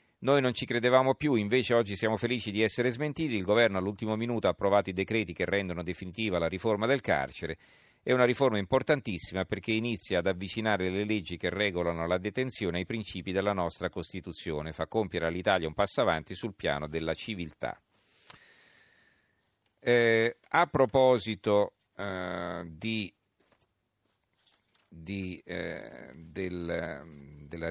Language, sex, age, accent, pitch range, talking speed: Italian, male, 50-69, native, 90-115 Hz, 140 wpm